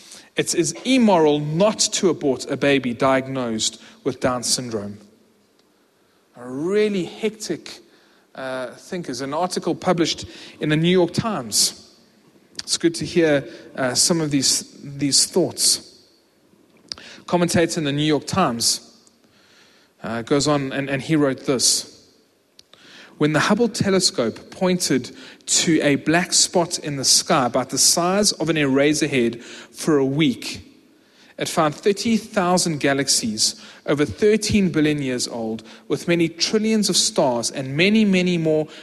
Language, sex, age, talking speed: English, male, 30-49, 140 wpm